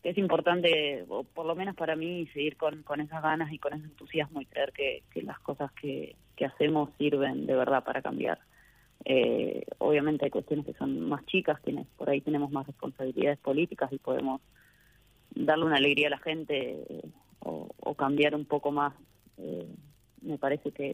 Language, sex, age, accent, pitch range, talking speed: Spanish, female, 20-39, Argentinian, 140-160 Hz, 185 wpm